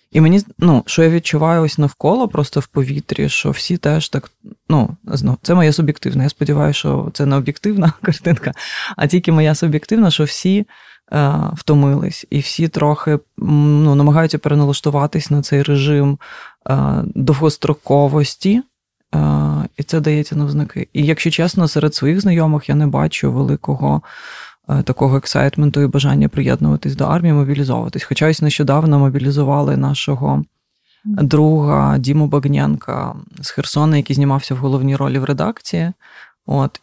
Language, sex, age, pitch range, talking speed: Ukrainian, female, 20-39, 140-160 Hz, 135 wpm